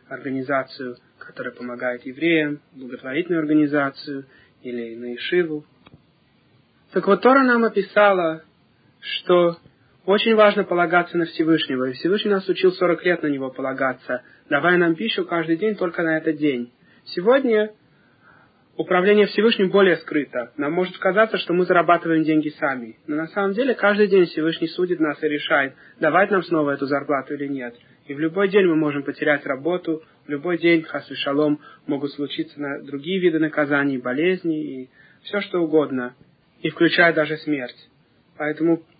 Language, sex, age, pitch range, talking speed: Russian, male, 30-49, 140-175 Hz, 150 wpm